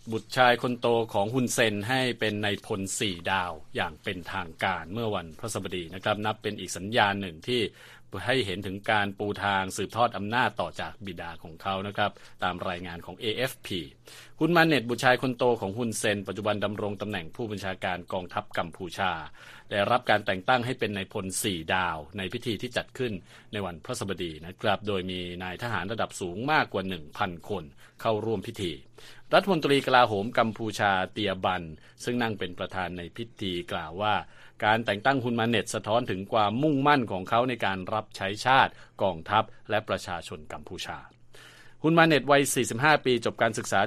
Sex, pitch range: male, 95-120 Hz